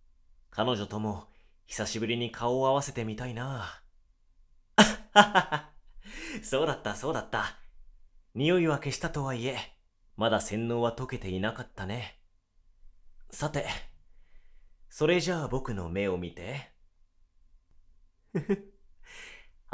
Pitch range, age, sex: 85-130 Hz, 30-49, male